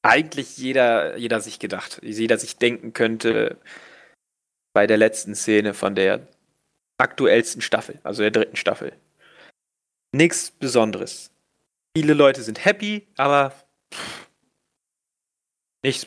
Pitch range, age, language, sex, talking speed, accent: 125-155 Hz, 30-49, German, male, 110 wpm, German